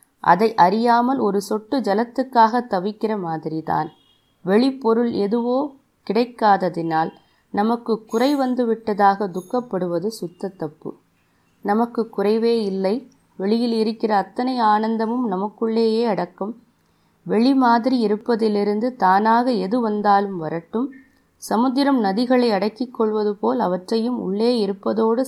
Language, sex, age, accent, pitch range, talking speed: Tamil, female, 20-39, native, 185-235 Hz, 95 wpm